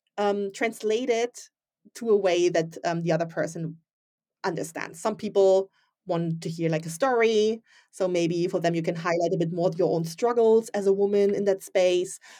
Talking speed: 190 wpm